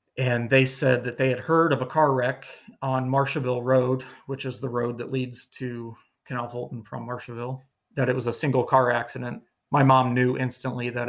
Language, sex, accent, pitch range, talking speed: English, male, American, 125-140 Hz, 200 wpm